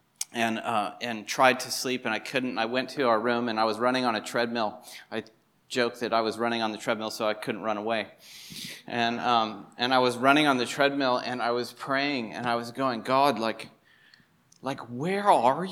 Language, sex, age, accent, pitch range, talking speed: English, male, 30-49, American, 120-155 Hz, 220 wpm